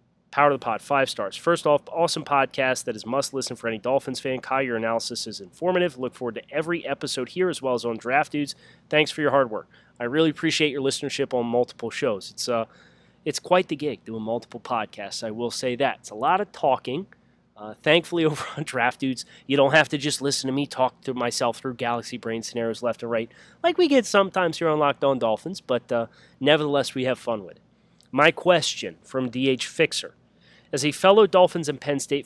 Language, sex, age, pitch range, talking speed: English, male, 30-49, 120-160 Hz, 220 wpm